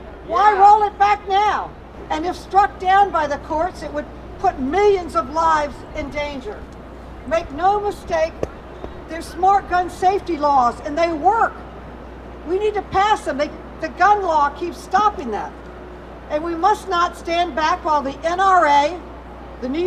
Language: English